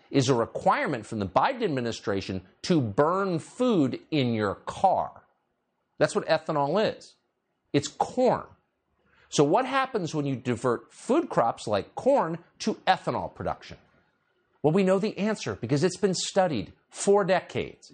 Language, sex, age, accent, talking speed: English, male, 50-69, American, 145 wpm